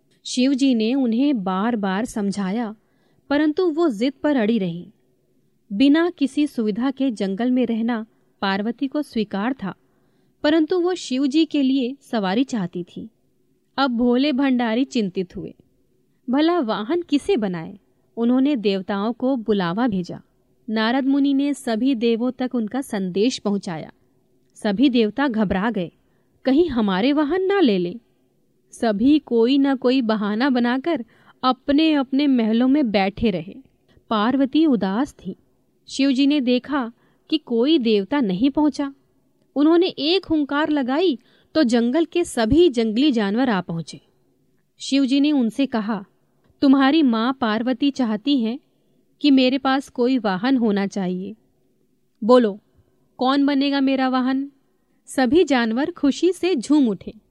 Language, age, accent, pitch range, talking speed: Hindi, 30-49, native, 215-280 Hz, 130 wpm